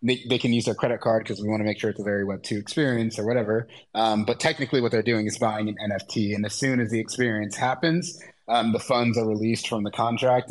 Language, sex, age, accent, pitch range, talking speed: English, male, 20-39, American, 110-125 Hz, 255 wpm